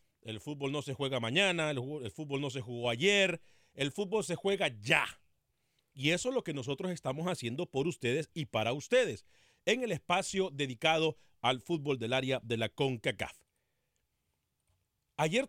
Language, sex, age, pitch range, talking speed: Spanish, male, 40-59, 120-180 Hz, 165 wpm